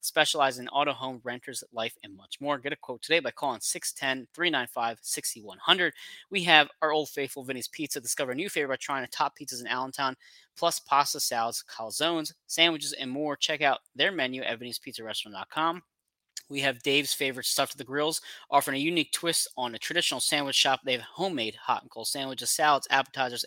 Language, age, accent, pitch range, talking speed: English, 20-39, American, 120-145 Hz, 190 wpm